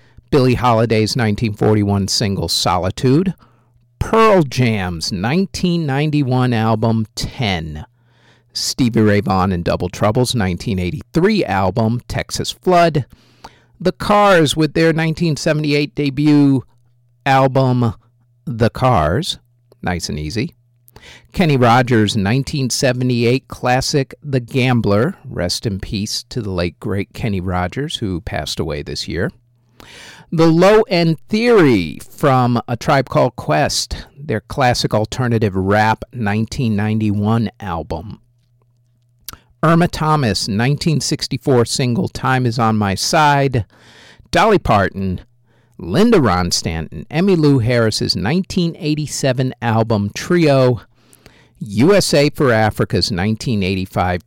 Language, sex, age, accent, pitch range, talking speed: English, male, 50-69, American, 105-135 Hz, 100 wpm